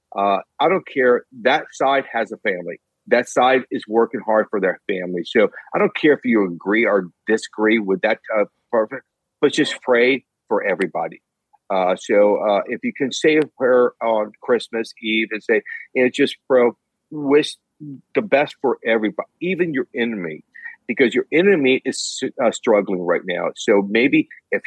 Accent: American